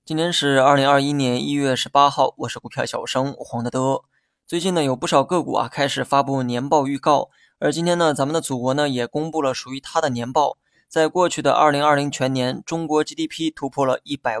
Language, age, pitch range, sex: Chinese, 20-39, 130-155 Hz, male